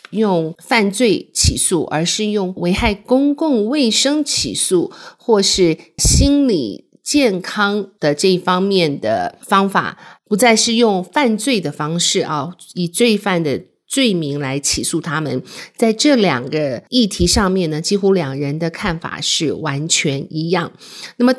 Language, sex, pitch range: Chinese, female, 165-225 Hz